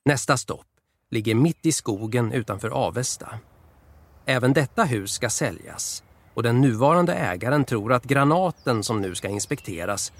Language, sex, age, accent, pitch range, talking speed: Swedish, male, 40-59, native, 105-140 Hz, 140 wpm